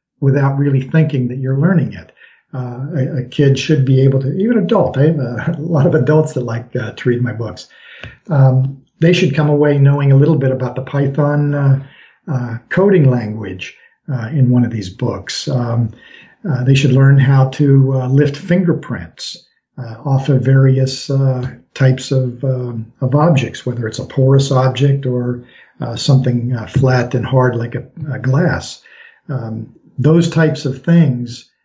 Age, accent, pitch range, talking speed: 50-69, American, 125-145 Hz, 175 wpm